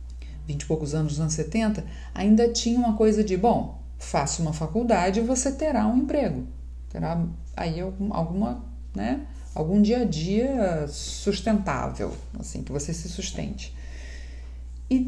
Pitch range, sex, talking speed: 155-235 Hz, female, 145 wpm